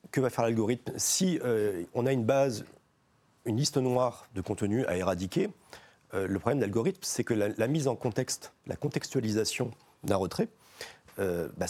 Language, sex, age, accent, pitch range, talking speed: French, male, 40-59, French, 95-130 Hz, 180 wpm